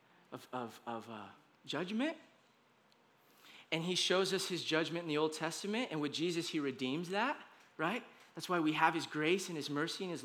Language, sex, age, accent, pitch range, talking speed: English, male, 20-39, American, 220-325 Hz, 195 wpm